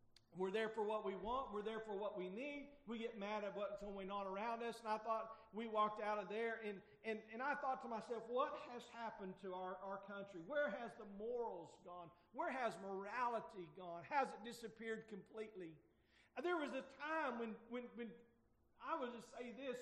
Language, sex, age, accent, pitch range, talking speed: English, male, 40-59, American, 200-245 Hz, 205 wpm